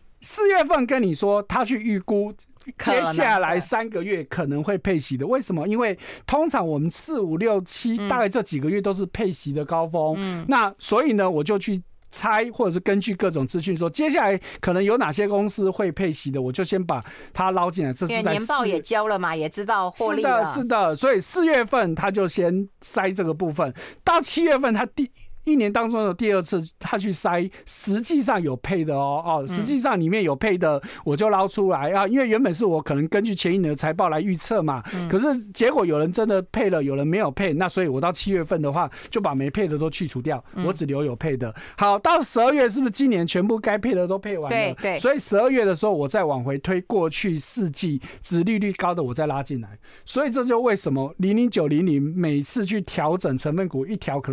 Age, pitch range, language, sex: 50-69, 160-220 Hz, Chinese, male